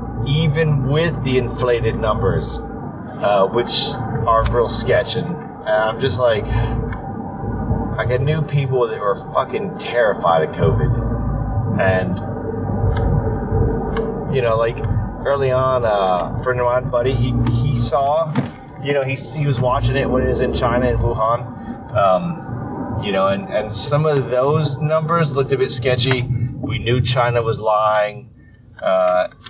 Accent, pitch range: American, 110-130 Hz